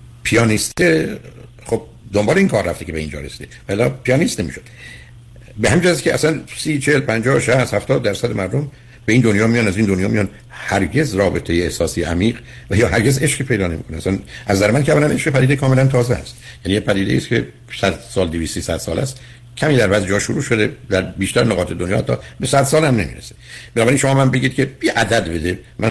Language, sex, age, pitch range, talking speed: Persian, male, 60-79, 95-125 Hz, 200 wpm